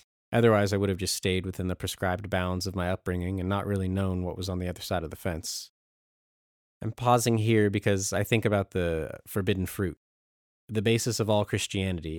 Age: 30-49